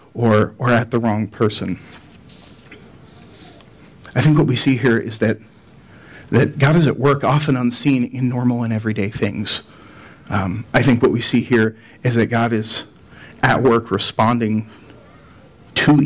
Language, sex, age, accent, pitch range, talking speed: English, male, 40-59, American, 110-135 Hz, 155 wpm